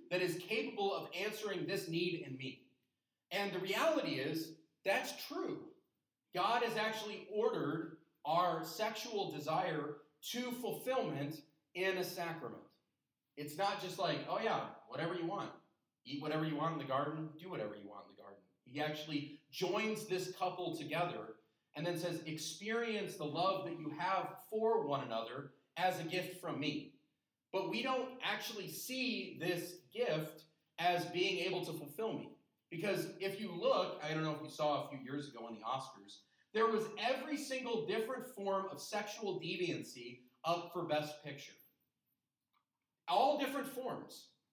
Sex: male